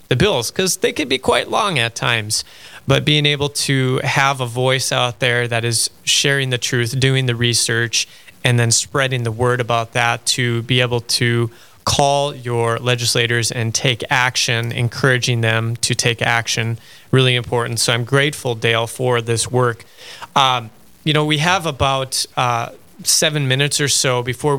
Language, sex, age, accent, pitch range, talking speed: English, male, 30-49, American, 120-140 Hz, 170 wpm